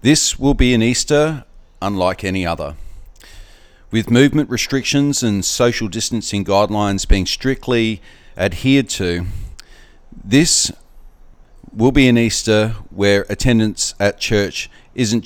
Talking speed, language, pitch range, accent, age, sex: 115 wpm, English, 95-130 Hz, Australian, 40-59, male